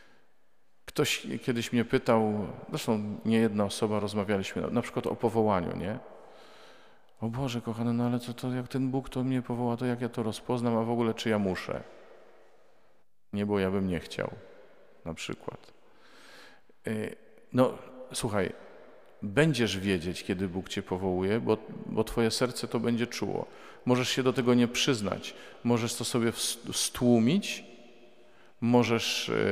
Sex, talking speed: male, 150 wpm